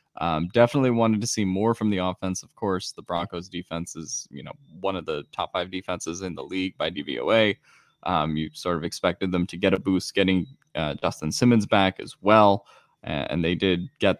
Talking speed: 205 wpm